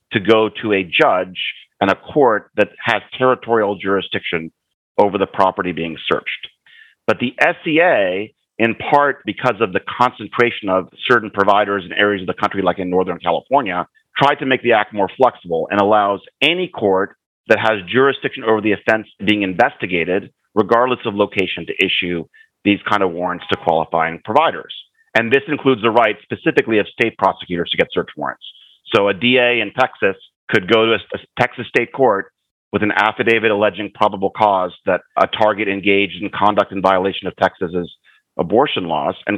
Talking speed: 170 wpm